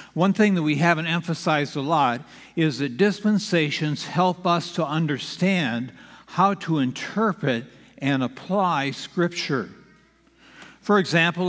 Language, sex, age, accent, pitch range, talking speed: English, male, 60-79, American, 150-190 Hz, 120 wpm